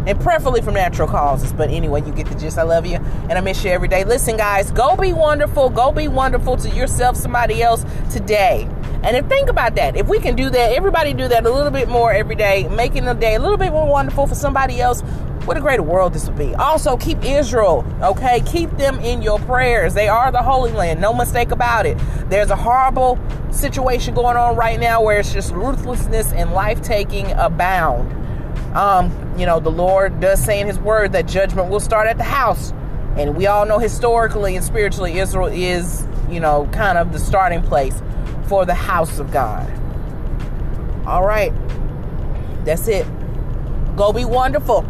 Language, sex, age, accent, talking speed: English, female, 30-49, American, 200 wpm